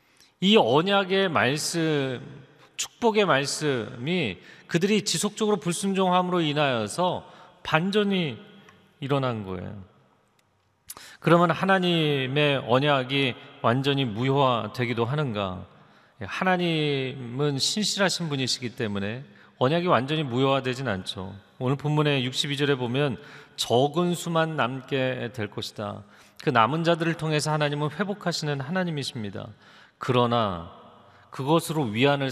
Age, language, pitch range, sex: 40-59, Korean, 125-175 Hz, male